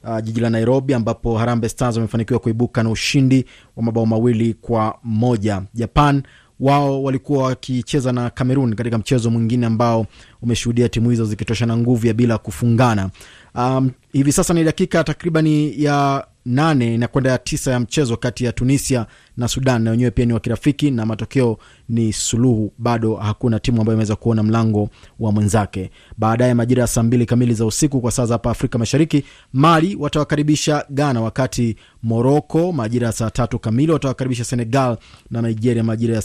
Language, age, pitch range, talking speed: Swahili, 30-49, 115-130 Hz, 165 wpm